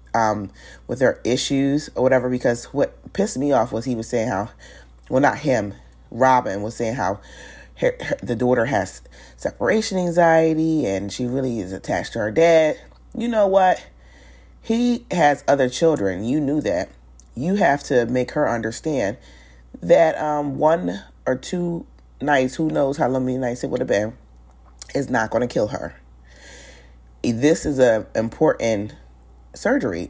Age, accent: 30-49, American